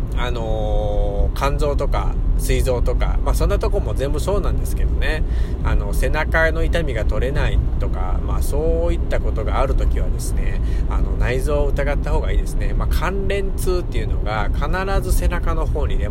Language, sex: Japanese, male